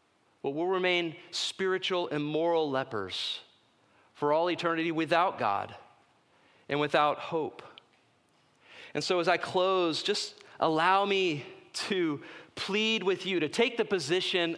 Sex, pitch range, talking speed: male, 150-185 Hz, 130 wpm